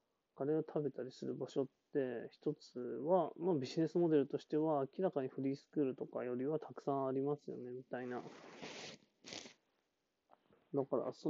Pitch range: 130-160 Hz